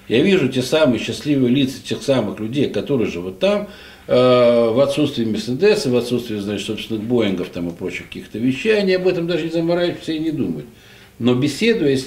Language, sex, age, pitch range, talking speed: Russian, male, 60-79, 100-140 Hz, 190 wpm